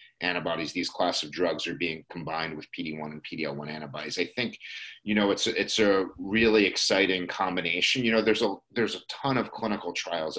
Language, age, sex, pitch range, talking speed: English, 30-49, male, 90-110 Hz, 215 wpm